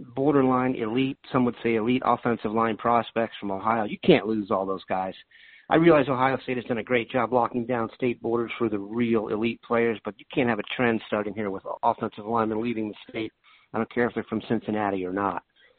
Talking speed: 220 wpm